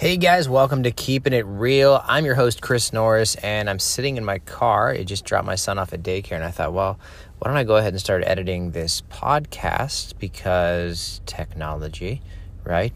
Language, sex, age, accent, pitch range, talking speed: English, male, 20-39, American, 85-110 Hz, 200 wpm